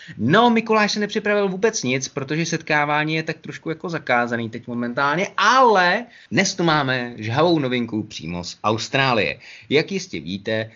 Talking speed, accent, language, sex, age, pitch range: 150 wpm, native, Czech, male, 30-49, 120-150 Hz